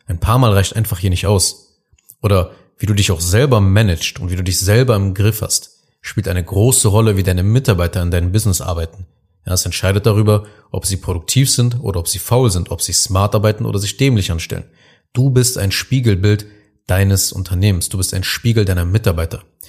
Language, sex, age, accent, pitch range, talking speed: German, male, 30-49, German, 95-110 Hz, 200 wpm